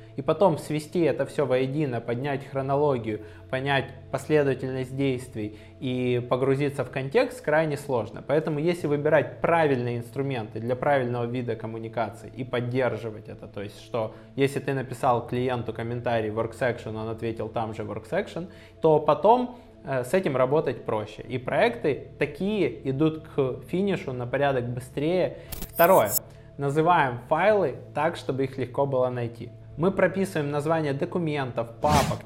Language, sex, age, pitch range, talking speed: Russian, male, 20-39, 115-150 Hz, 140 wpm